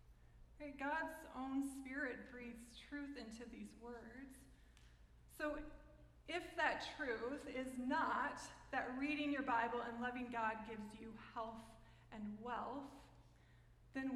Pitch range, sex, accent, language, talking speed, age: 225-280 Hz, female, American, English, 115 wpm, 20-39